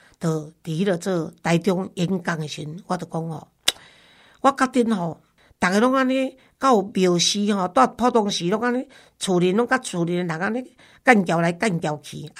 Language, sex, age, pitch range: Chinese, female, 50-69, 175-235 Hz